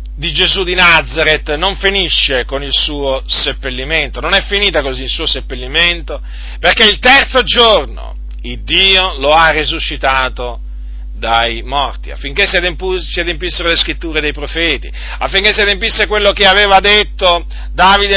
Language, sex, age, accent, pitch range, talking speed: Italian, male, 40-59, native, 145-210 Hz, 140 wpm